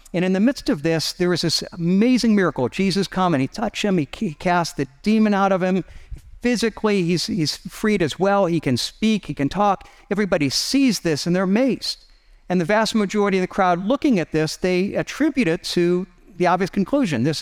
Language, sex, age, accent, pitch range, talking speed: English, male, 50-69, American, 160-205 Hz, 205 wpm